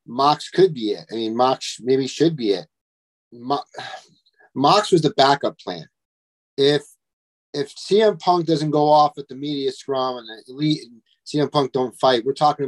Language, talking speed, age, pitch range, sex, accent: English, 175 wpm, 40-59, 115-145 Hz, male, American